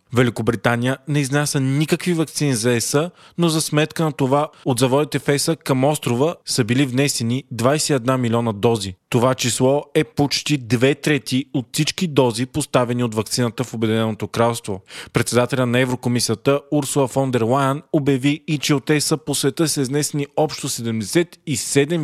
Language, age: Bulgarian, 20-39